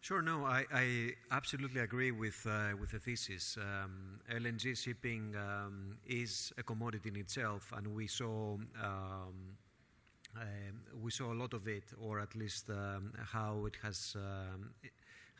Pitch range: 100-120 Hz